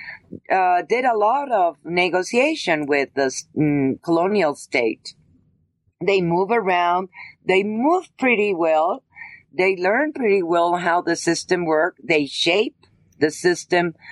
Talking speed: 125 wpm